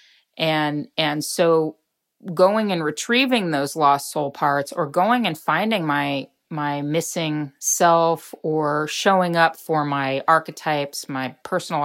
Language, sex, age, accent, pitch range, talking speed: English, female, 30-49, American, 140-175 Hz, 130 wpm